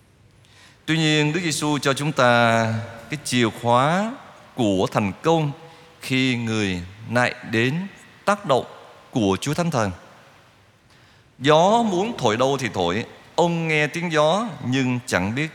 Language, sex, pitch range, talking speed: Vietnamese, male, 110-150 Hz, 140 wpm